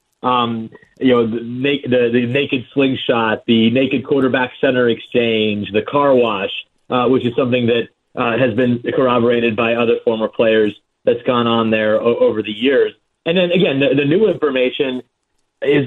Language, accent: English, American